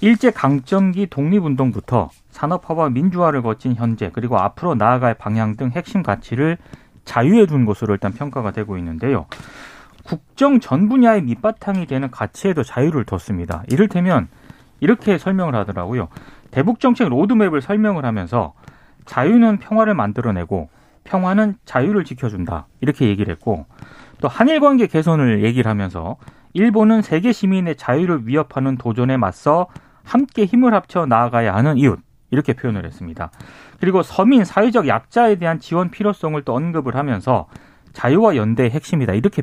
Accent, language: native, Korean